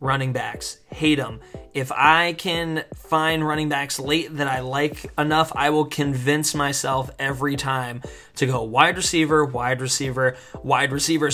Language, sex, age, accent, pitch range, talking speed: English, male, 20-39, American, 135-160 Hz, 155 wpm